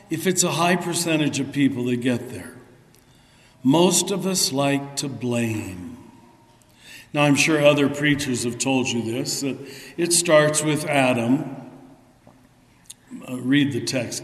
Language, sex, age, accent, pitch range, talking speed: English, male, 60-79, American, 130-155 Hz, 145 wpm